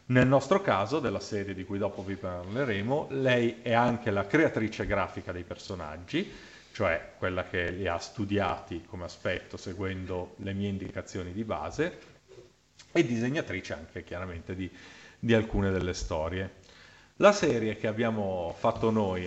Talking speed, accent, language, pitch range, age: 145 wpm, native, Italian, 95-120 Hz, 40-59